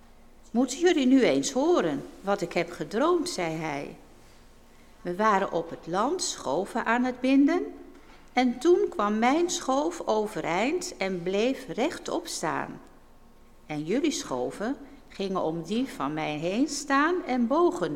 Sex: female